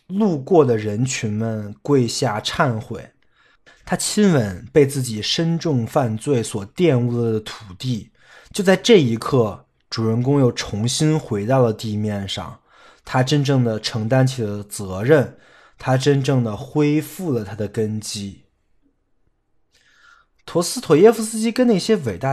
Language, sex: Chinese, male